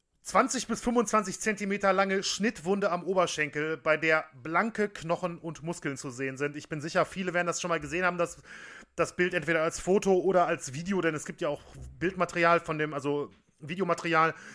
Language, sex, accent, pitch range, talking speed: German, male, German, 165-195 Hz, 190 wpm